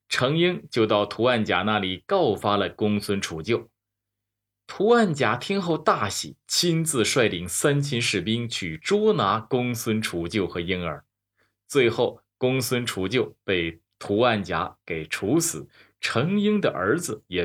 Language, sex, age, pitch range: Chinese, male, 20-39, 100-145 Hz